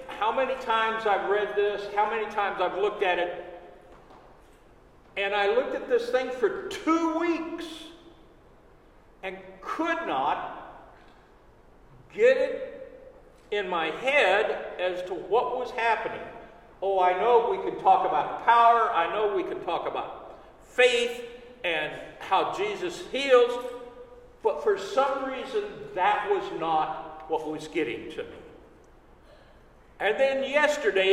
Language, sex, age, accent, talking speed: English, male, 50-69, American, 135 wpm